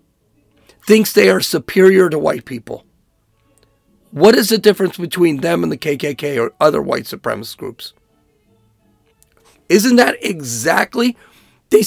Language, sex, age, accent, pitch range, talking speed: English, male, 40-59, American, 170-225 Hz, 125 wpm